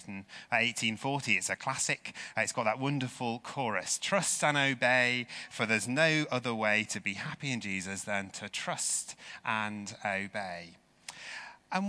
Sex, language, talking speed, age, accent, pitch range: male, English, 145 wpm, 30-49, British, 105-150 Hz